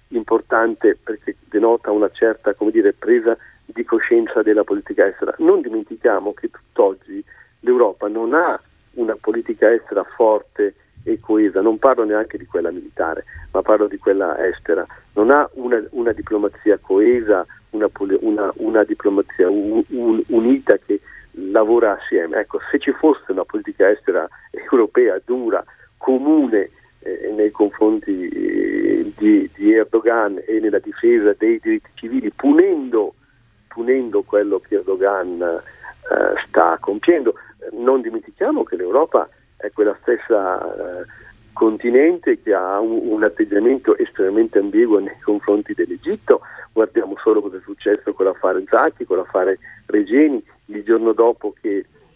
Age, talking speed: 50-69, 135 wpm